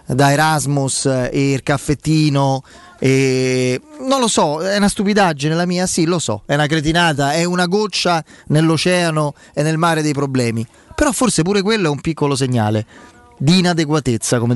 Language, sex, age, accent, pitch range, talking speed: Italian, male, 30-49, native, 130-180 Hz, 165 wpm